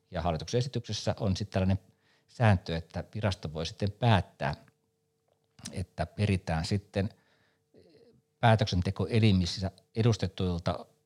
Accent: native